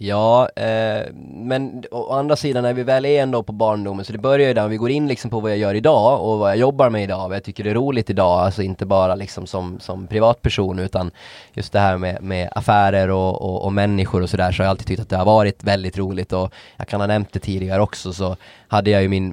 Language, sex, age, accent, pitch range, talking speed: Swedish, male, 20-39, native, 95-110 Hz, 265 wpm